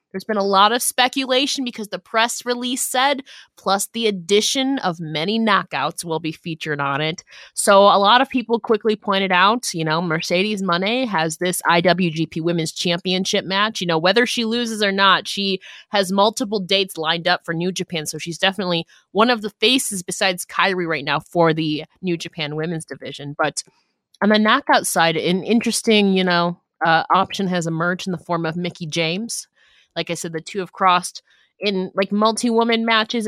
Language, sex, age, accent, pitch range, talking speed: English, female, 20-39, American, 175-230 Hz, 185 wpm